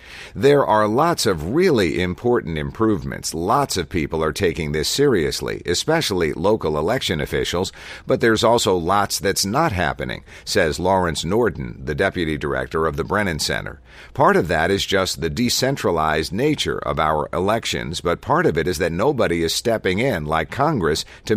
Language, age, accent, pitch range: English, 50-69, American, 80-105 Hz